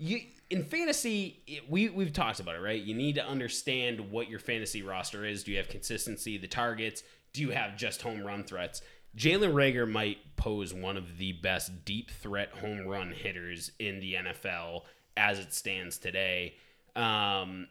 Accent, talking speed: American, 175 wpm